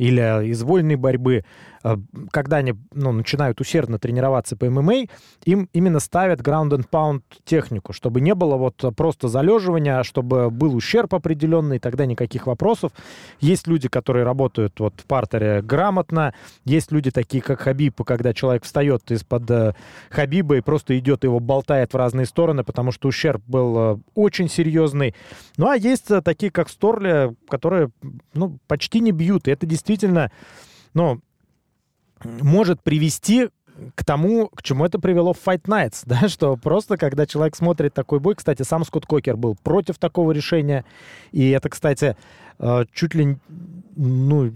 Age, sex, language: 20-39, male, Russian